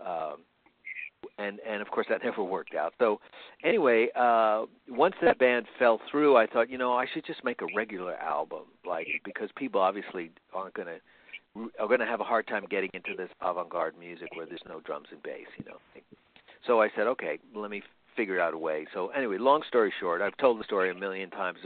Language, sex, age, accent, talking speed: English, male, 50-69, American, 210 wpm